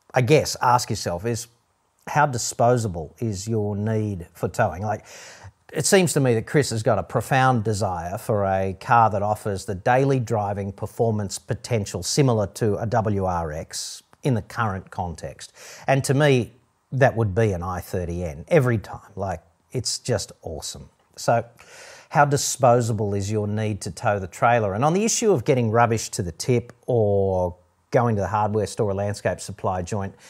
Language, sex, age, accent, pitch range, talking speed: English, male, 40-59, Australian, 100-130 Hz, 170 wpm